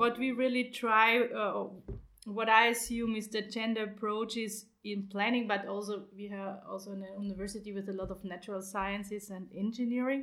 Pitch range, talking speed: 190-220 Hz, 170 wpm